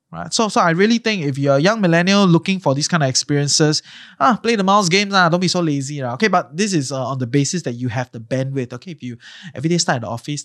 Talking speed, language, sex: 295 wpm, English, male